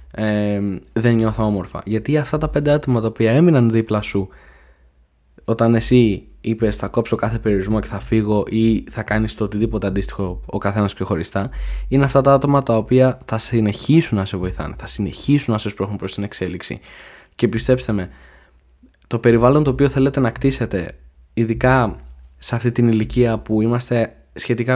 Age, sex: 20-39, male